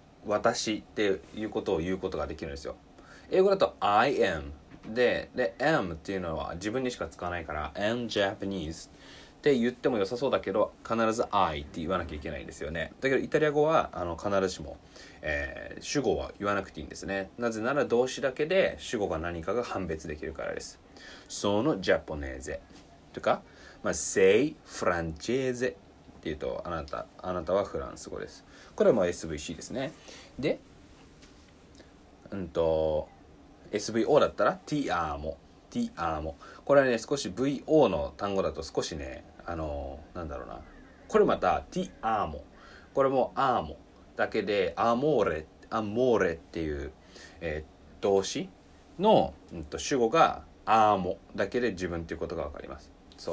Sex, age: male, 20-39